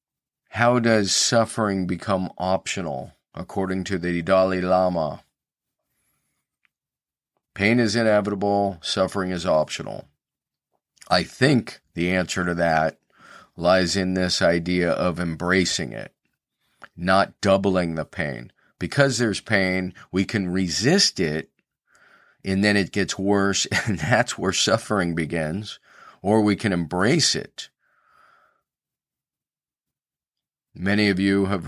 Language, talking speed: English, 110 wpm